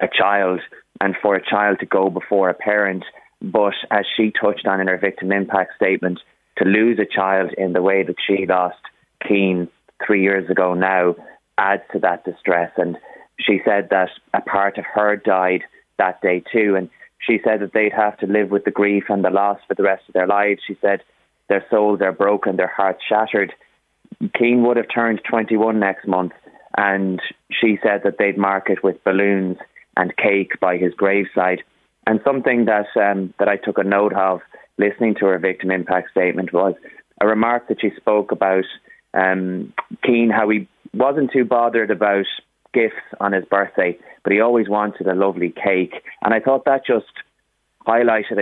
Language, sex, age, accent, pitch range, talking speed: English, male, 20-39, Irish, 95-105 Hz, 185 wpm